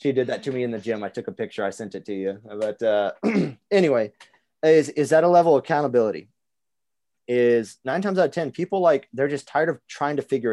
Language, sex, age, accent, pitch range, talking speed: English, male, 30-49, American, 105-135 Hz, 240 wpm